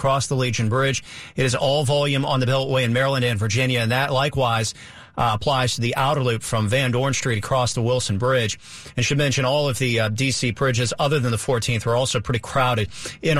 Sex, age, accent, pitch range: male, 40-59, American, 115-135 Hz